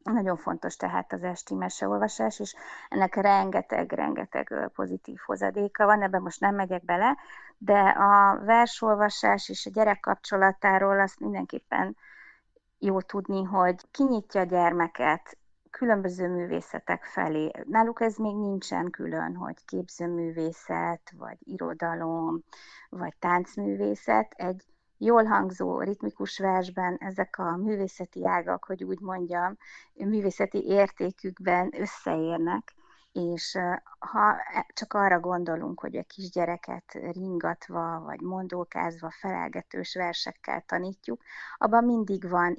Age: 30-49